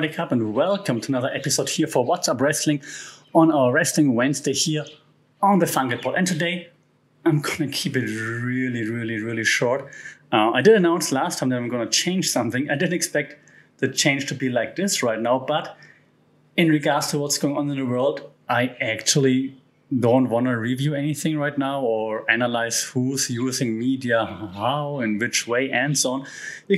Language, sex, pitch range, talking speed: English, male, 125-165 Hz, 190 wpm